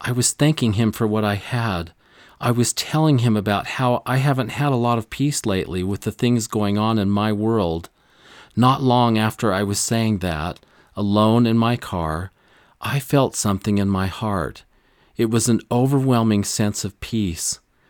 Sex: male